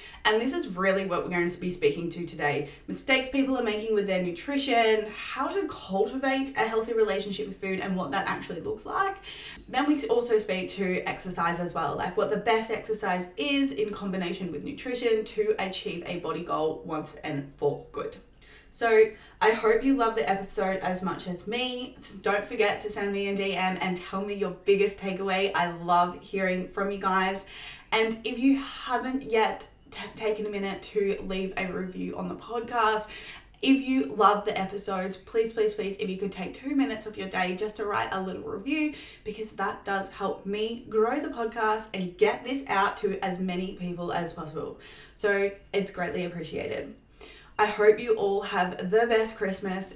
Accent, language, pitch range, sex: Australian, English, 185-225 Hz, female